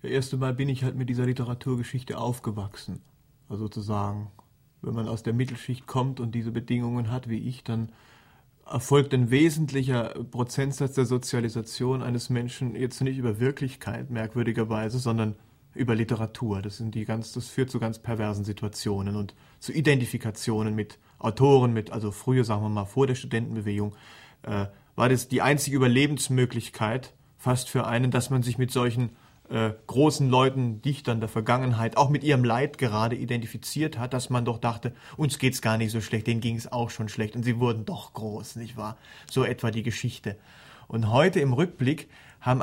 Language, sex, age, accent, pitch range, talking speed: German, male, 40-59, German, 115-130 Hz, 170 wpm